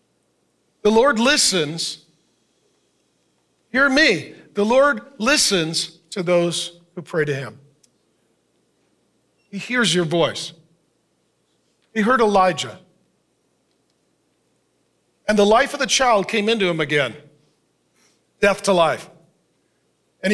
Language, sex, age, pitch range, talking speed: English, male, 50-69, 170-225 Hz, 105 wpm